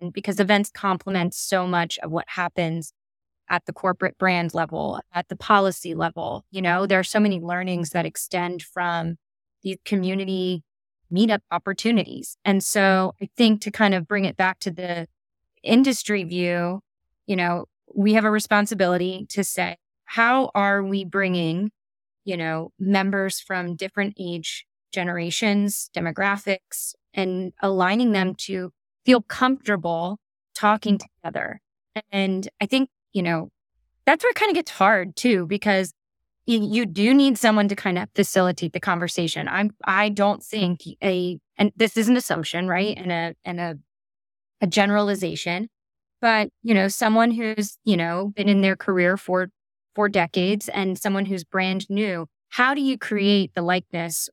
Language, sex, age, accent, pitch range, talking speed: English, female, 20-39, American, 180-210 Hz, 155 wpm